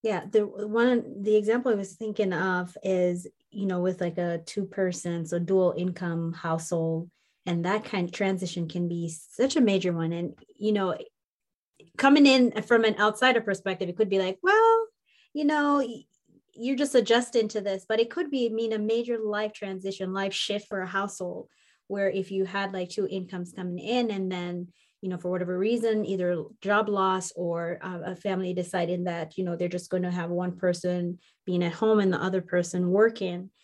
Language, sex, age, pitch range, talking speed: English, female, 20-39, 180-215 Hz, 195 wpm